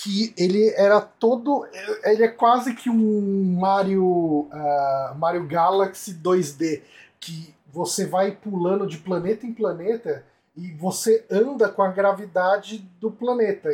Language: Portuguese